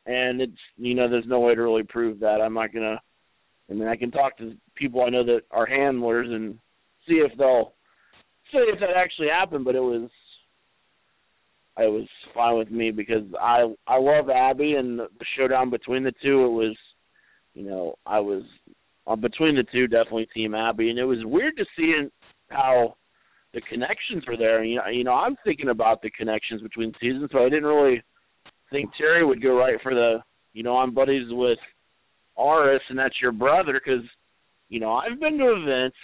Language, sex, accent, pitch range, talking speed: English, male, American, 115-135 Hz, 195 wpm